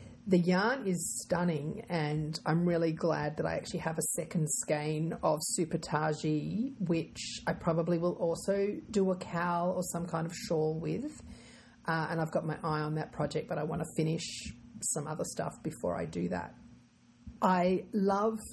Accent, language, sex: Australian, English, female